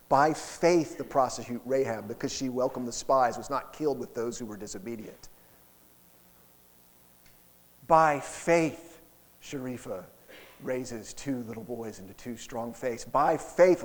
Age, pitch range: 40-59, 105-155 Hz